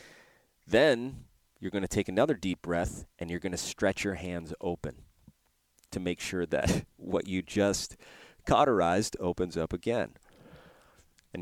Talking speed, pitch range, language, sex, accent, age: 145 wpm, 80-100 Hz, English, male, American, 30-49